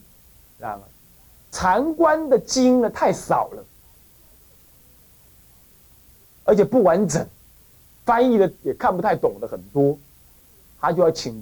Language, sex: Chinese, male